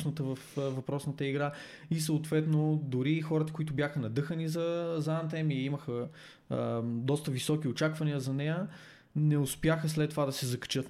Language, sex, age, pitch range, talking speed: Bulgarian, male, 20-39, 125-155 Hz, 150 wpm